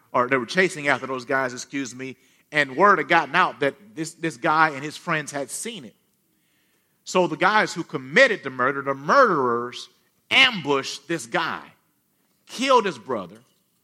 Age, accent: 50-69, American